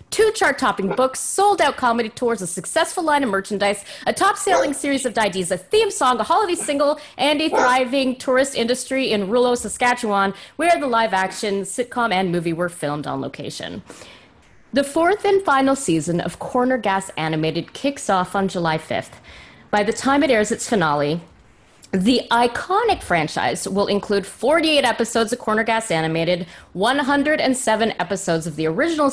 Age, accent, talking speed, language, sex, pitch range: 30-49, American, 160 wpm, English, female, 180-275 Hz